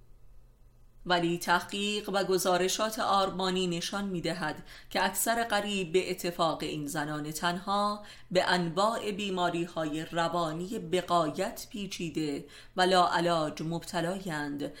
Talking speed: 100 wpm